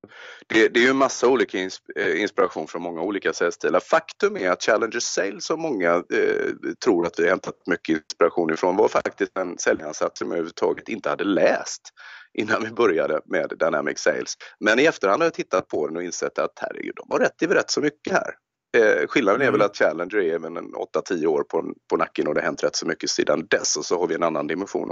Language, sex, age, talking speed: Swedish, male, 30-49, 225 wpm